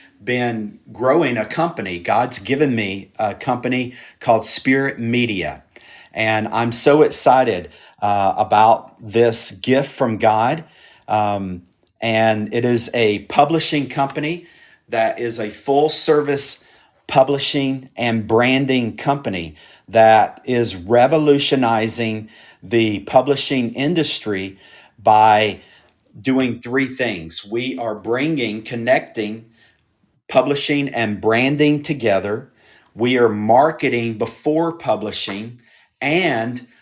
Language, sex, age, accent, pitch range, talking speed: English, male, 50-69, American, 110-140 Hz, 100 wpm